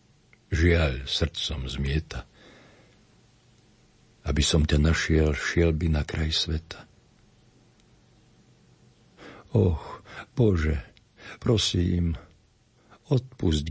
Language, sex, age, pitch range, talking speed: Slovak, male, 60-79, 80-110 Hz, 70 wpm